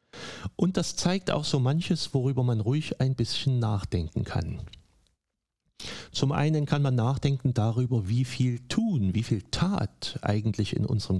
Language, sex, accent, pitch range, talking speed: German, male, German, 105-140 Hz, 150 wpm